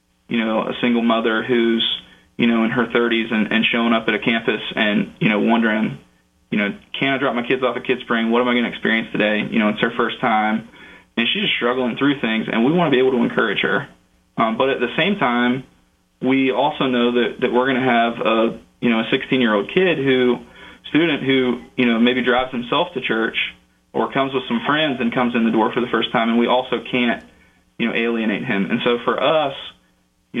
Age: 20-39